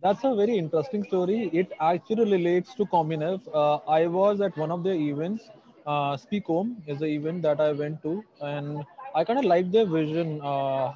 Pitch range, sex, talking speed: 150-175 Hz, male, 195 wpm